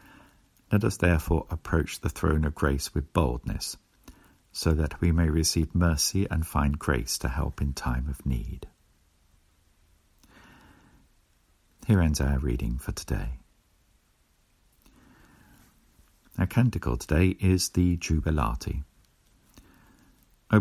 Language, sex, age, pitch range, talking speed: English, male, 50-69, 70-85 Hz, 110 wpm